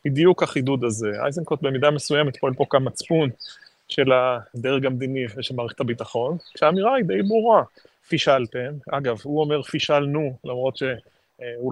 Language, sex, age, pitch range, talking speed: Hebrew, male, 30-49, 125-155 Hz, 135 wpm